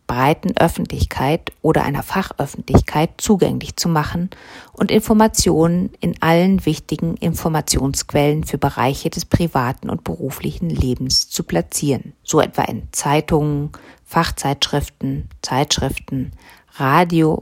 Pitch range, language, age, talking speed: 140-185 Hz, German, 40-59, 105 wpm